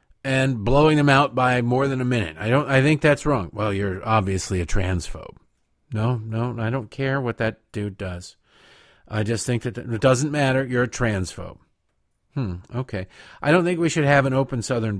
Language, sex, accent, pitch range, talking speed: English, male, American, 105-140 Hz, 200 wpm